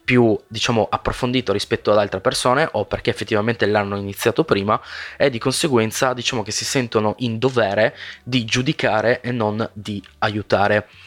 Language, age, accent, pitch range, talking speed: Italian, 20-39, native, 105-125 Hz, 150 wpm